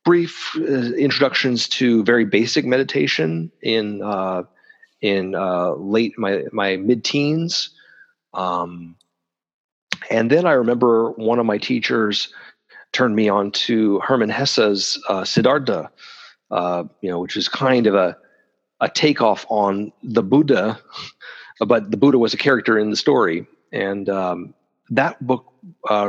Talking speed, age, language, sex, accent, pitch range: 135 wpm, 40-59, English, male, American, 105-140 Hz